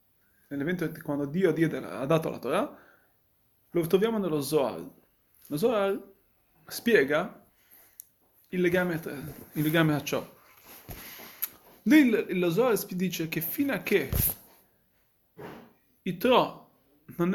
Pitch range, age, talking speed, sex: 170-220 Hz, 30-49, 120 wpm, male